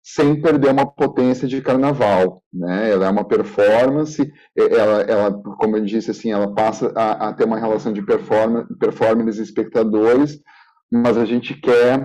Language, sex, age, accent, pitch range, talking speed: Portuguese, male, 40-59, Brazilian, 125-180 Hz, 150 wpm